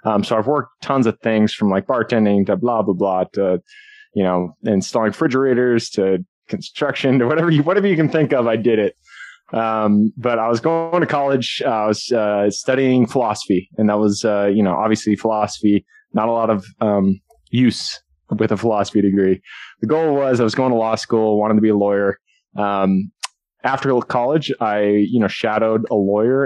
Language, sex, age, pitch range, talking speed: English, male, 20-39, 105-120 Hz, 195 wpm